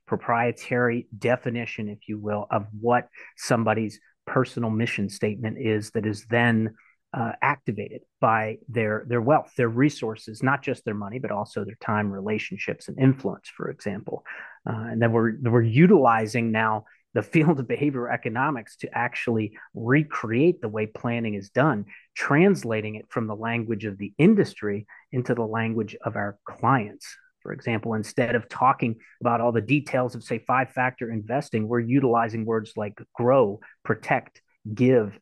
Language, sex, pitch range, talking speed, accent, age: English, male, 110-135 Hz, 155 wpm, American, 30-49